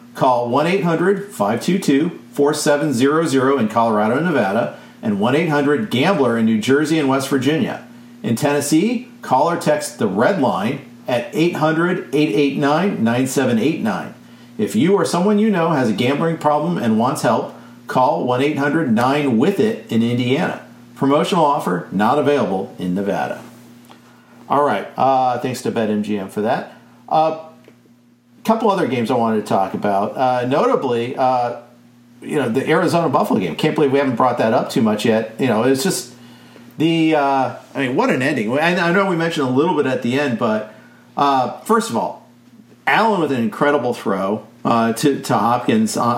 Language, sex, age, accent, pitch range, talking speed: English, male, 50-69, American, 120-160 Hz, 150 wpm